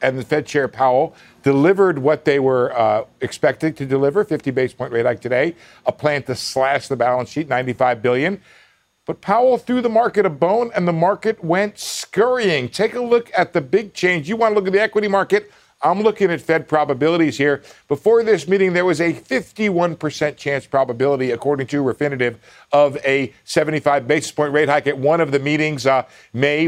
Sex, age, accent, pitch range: male, 50-69, American, 130-180 Hz